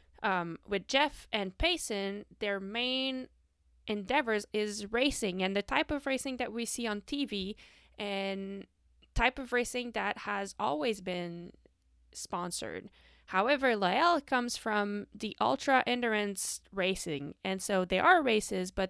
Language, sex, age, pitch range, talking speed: French, female, 20-39, 195-245 Hz, 135 wpm